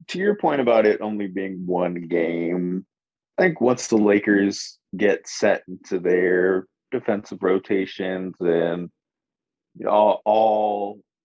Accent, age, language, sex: American, 20-39, English, male